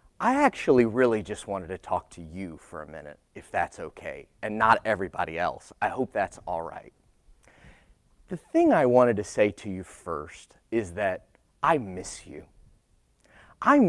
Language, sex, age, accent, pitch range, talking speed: English, male, 30-49, American, 105-160 Hz, 170 wpm